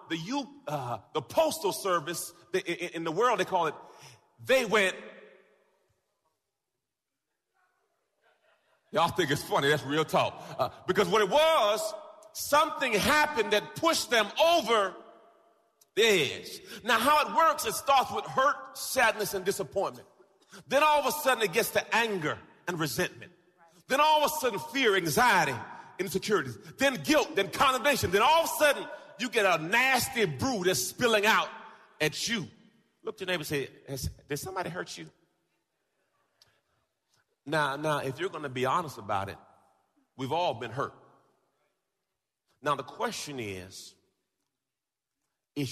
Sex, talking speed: male, 150 wpm